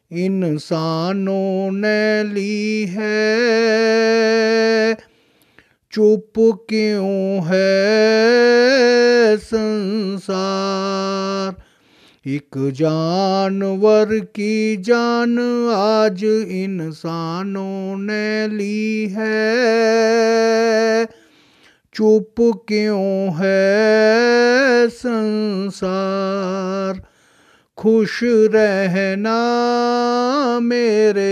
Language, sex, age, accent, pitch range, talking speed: Hindi, male, 50-69, native, 195-225 Hz, 45 wpm